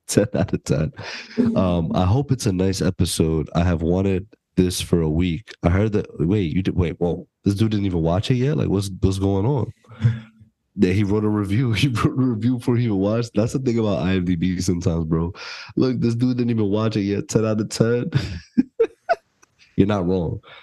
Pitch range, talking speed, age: 85-105 Hz, 210 wpm, 20-39